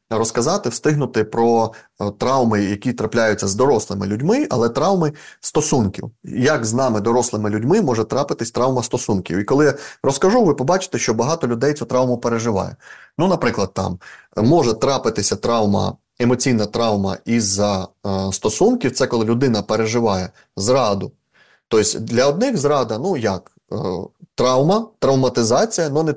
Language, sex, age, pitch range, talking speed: Ukrainian, male, 30-49, 105-130 Hz, 135 wpm